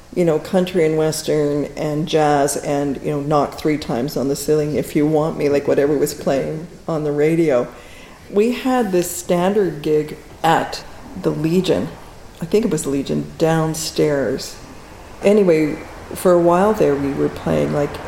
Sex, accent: female, American